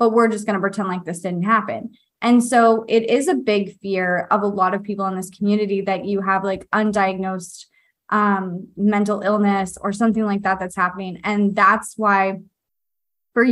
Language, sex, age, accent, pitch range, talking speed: English, female, 20-39, American, 195-225 Hz, 185 wpm